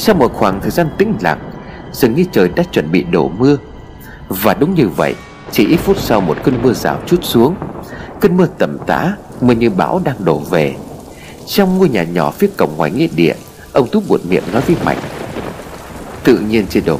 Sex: male